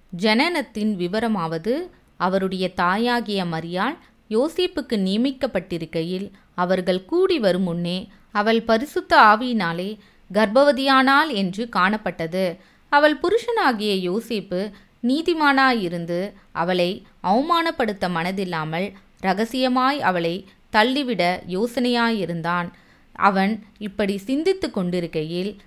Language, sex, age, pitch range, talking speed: Tamil, female, 20-39, 180-240 Hz, 75 wpm